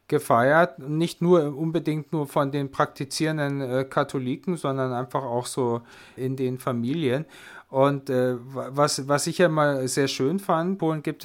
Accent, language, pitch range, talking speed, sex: German, German, 125-140 Hz, 150 wpm, male